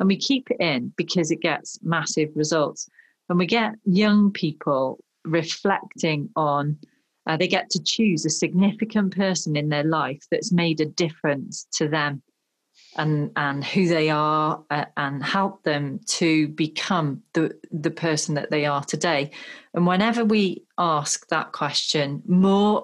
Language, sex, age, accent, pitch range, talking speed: English, female, 40-59, British, 150-185 Hz, 155 wpm